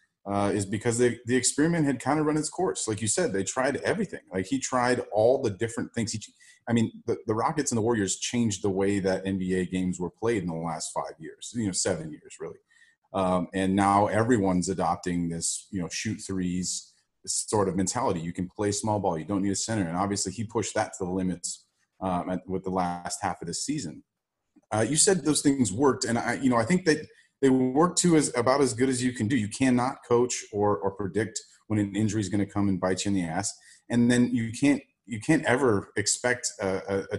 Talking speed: 235 wpm